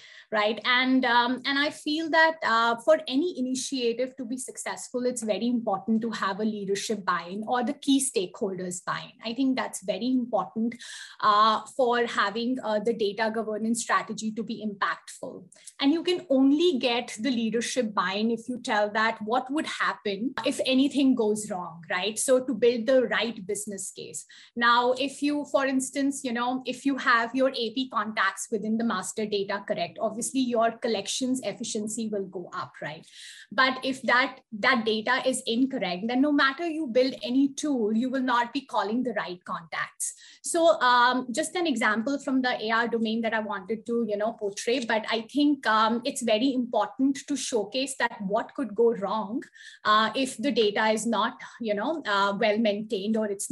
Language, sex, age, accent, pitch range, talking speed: English, female, 20-39, Indian, 220-270 Hz, 180 wpm